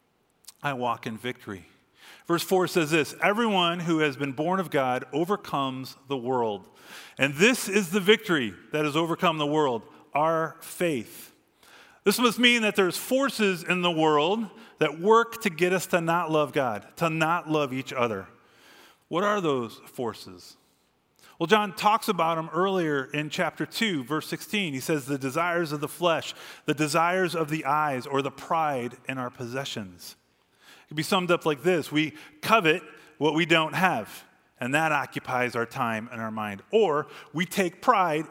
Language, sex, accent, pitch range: English, male, American, 135-180 Hz